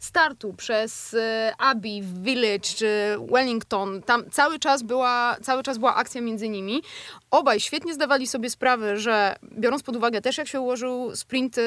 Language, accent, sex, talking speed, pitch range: Polish, native, female, 145 wpm, 230-285 Hz